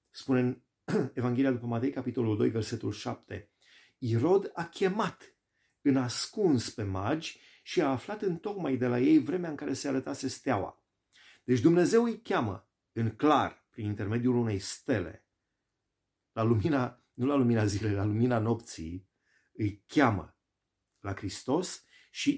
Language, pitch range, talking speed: Romanian, 105-135 Hz, 145 wpm